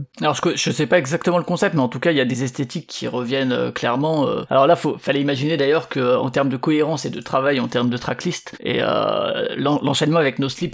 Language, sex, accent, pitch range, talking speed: French, male, French, 130-155 Hz, 265 wpm